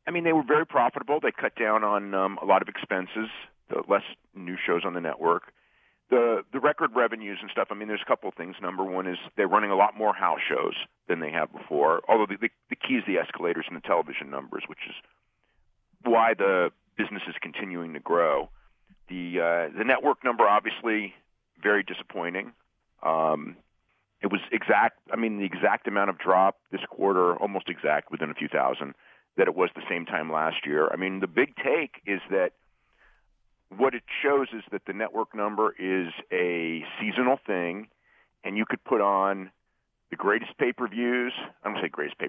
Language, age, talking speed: English, 40-59, 195 wpm